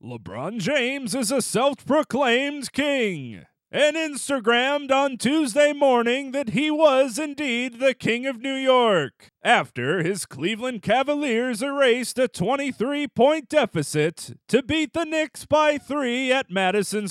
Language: English